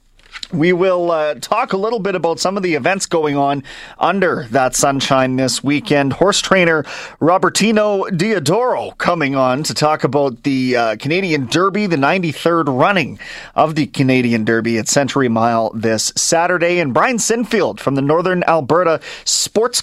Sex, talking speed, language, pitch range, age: male, 155 wpm, English, 135-175 Hz, 30-49